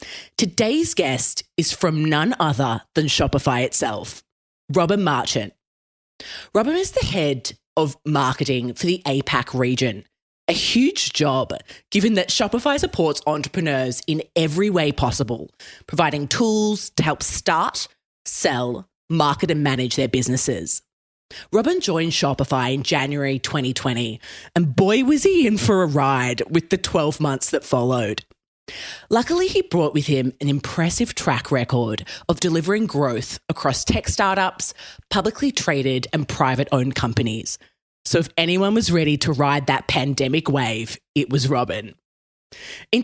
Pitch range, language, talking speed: 130-190 Hz, English, 140 wpm